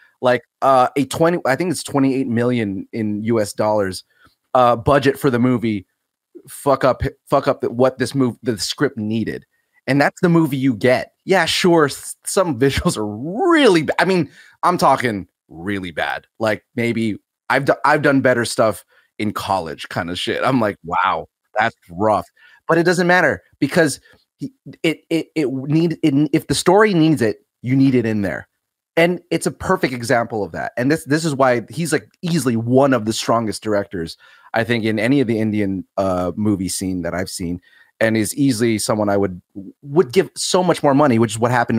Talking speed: 190 wpm